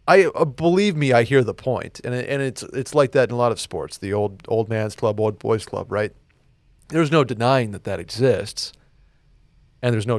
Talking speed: 220 wpm